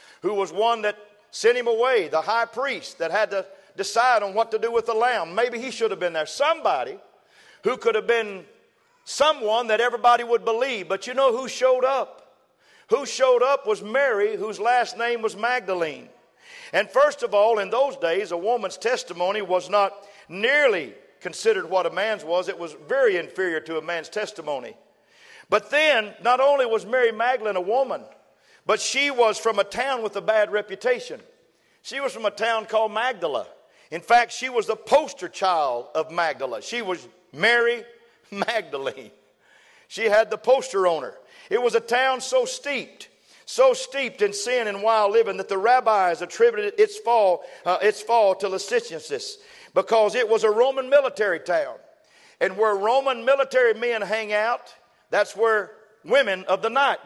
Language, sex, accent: English, male, American